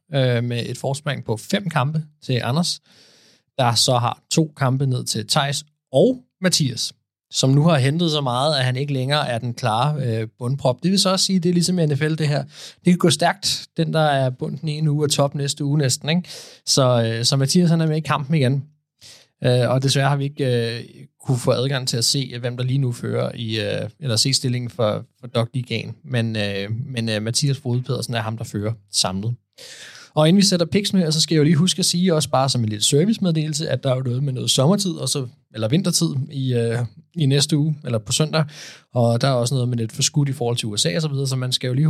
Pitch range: 120-155 Hz